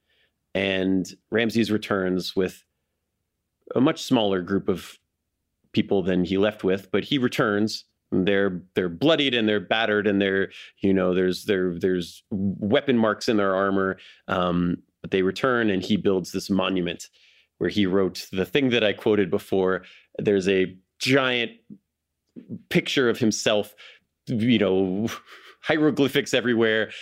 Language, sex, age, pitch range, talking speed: English, male, 30-49, 95-125 Hz, 140 wpm